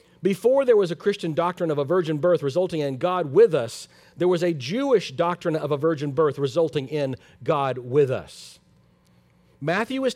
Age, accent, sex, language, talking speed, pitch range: 50-69, American, male, English, 185 wpm, 130-180 Hz